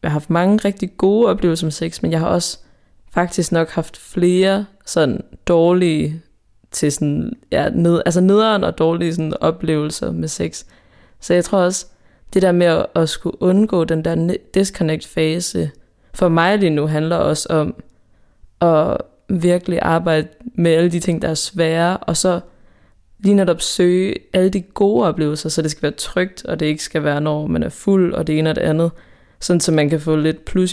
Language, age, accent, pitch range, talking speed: Danish, 20-39, native, 145-175 Hz, 190 wpm